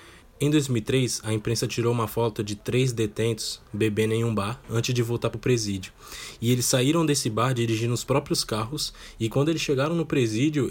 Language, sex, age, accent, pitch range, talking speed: Portuguese, male, 10-29, Brazilian, 110-145 Hz, 195 wpm